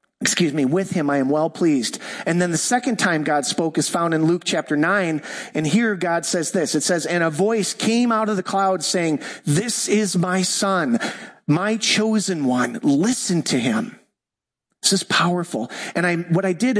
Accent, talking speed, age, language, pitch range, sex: American, 195 wpm, 40-59, English, 150-200 Hz, male